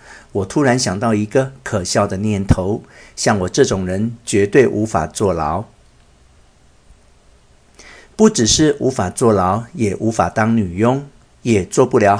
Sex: male